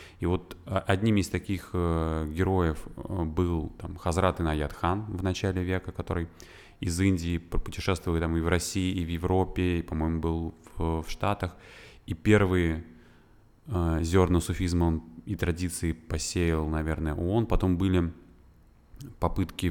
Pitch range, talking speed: 80-95 Hz, 130 wpm